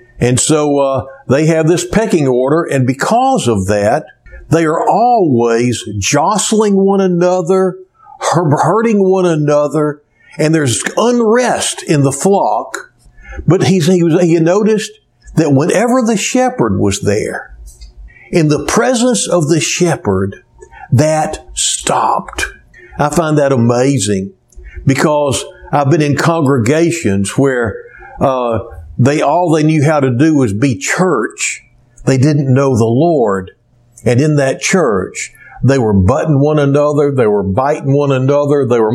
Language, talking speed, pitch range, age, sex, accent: English, 135 wpm, 115-165 Hz, 60-79, male, American